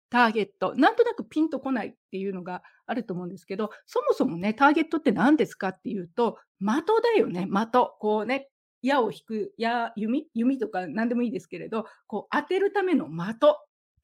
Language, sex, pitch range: Japanese, female, 205-280 Hz